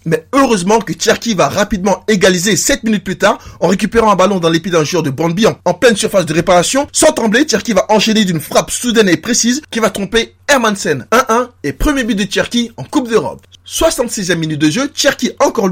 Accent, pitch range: French, 180-240 Hz